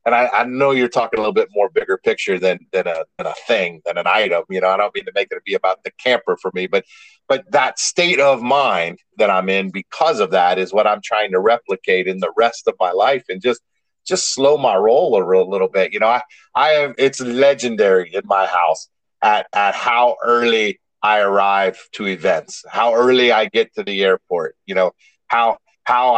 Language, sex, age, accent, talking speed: English, male, 40-59, American, 220 wpm